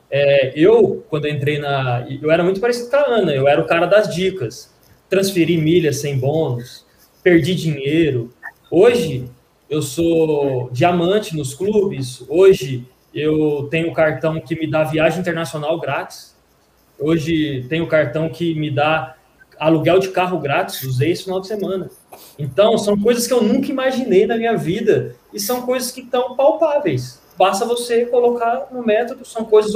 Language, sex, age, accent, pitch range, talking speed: Portuguese, male, 20-39, Brazilian, 150-225 Hz, 160 wpm